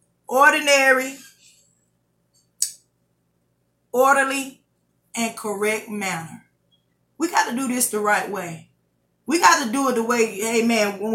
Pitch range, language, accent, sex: 175-250 Hz, English, American, female